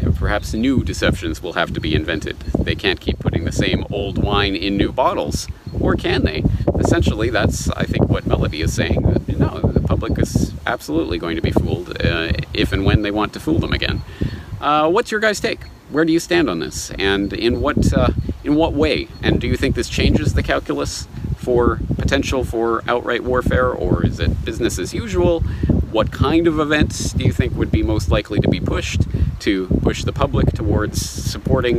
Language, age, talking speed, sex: English, 40-59, 205 wpm, male